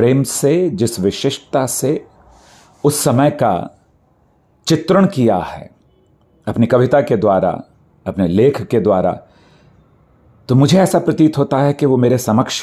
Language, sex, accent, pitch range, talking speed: English, male, Indian, 105-125 Hz, 140 wpm